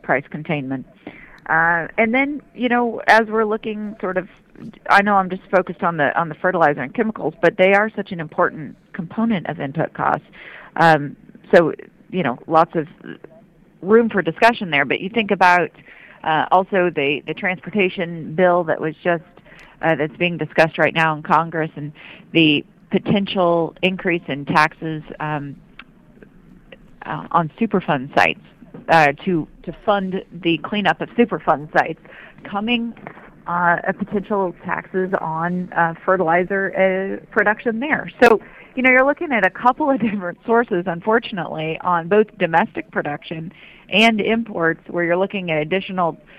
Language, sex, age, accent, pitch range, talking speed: English, female, 40-59, American, 160-205 Hz, 155 wpm